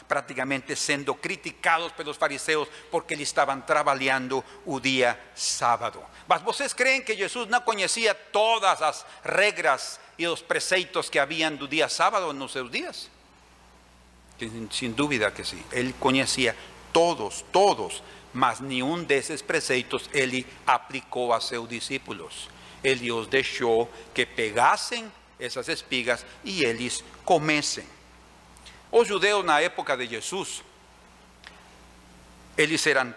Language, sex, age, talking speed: Portuguese, male, 50-69, 125 wpm